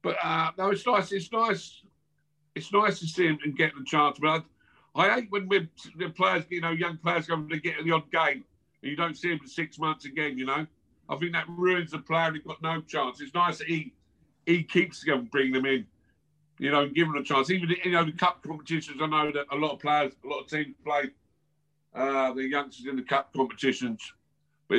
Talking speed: 240 wpm